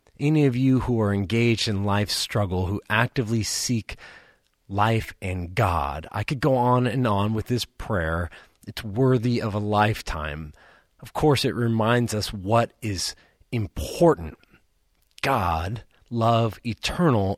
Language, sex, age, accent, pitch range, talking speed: English, male, 30-49, American, 90-120 Hz, 140 wpm